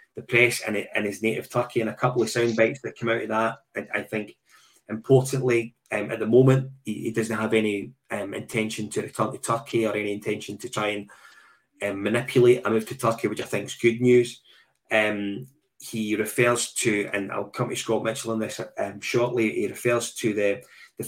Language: English